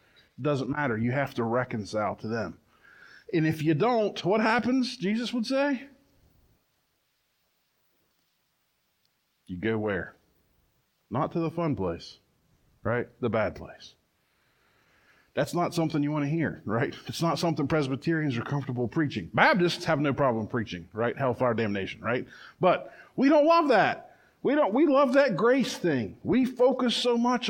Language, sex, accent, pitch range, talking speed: English, male, American, 130-190 Hz, 150 wpm